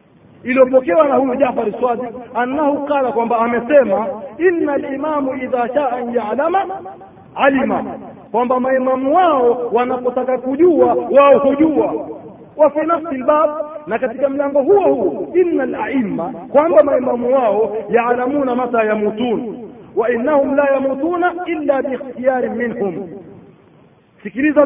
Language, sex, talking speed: Swahili, male, 95 wpm